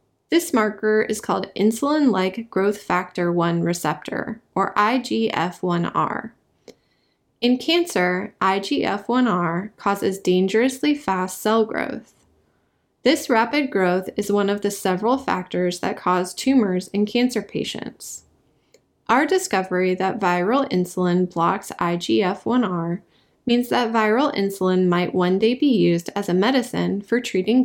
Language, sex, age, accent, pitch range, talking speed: English, female, 20-39, American, 180-240 Hz, 120 wpm